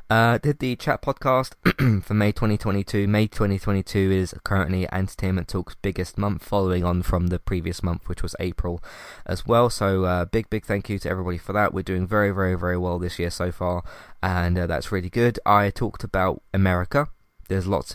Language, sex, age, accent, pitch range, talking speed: English, male, 20-39, British, 95-110 Hz, 195 wpm